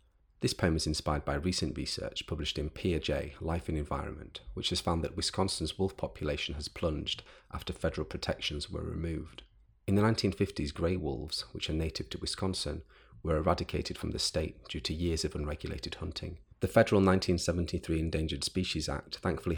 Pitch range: 75-95 Hz